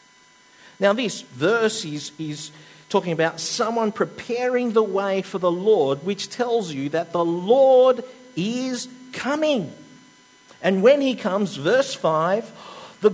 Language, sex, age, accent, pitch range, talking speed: English, male, 50-69, Australian, 145-215 Hz, 130 wpm